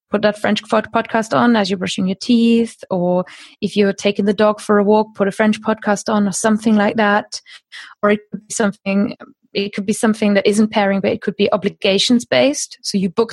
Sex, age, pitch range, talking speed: female, 20-39, 200-230 Hz, 220 wpm